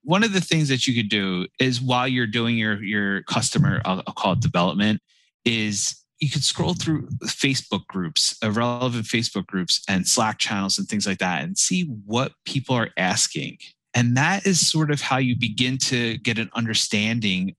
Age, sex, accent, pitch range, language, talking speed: 30-49, male, American, 100-135 Hz, English, 185 wpm